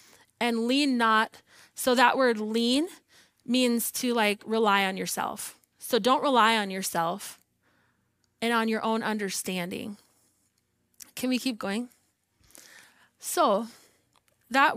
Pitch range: 190-235 Hz